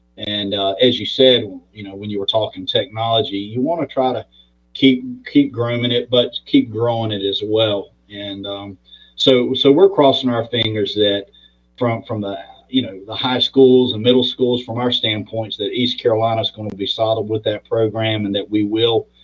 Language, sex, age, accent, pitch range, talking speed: English, male, 40-59, American, 100-125 Hz, 205 wpm